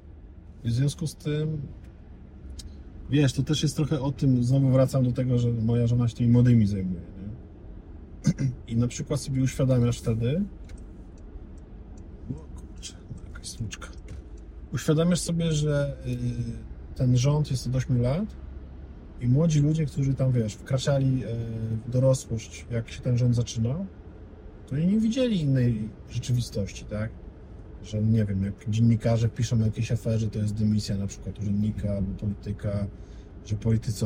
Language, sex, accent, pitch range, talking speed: Polish, male, native, 100-135 Hz, 145 wpm